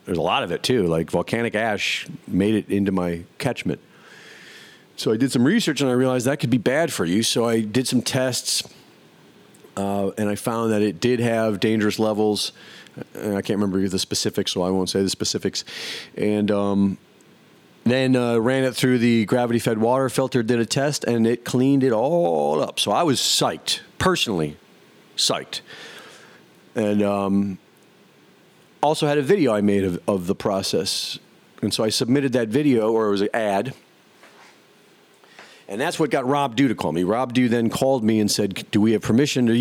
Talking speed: 190 wpm